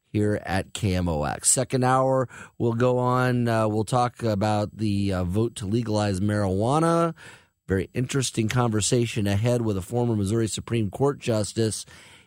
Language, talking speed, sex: English, 140 wpm, male